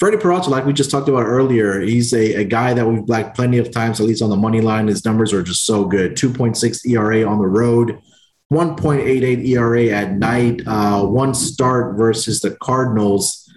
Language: English